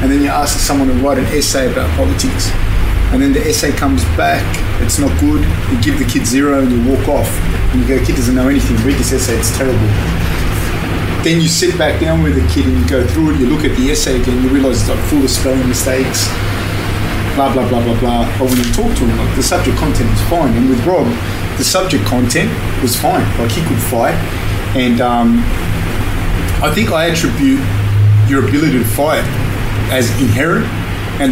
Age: 30-49